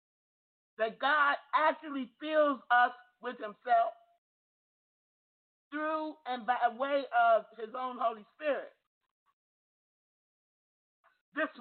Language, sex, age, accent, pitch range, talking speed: English, male, 50-69, American, 230-300 Hz, 90 wpm